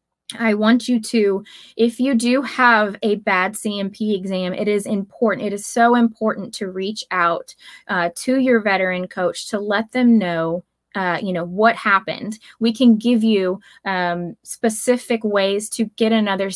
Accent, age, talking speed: American, 20-39, 165 wpm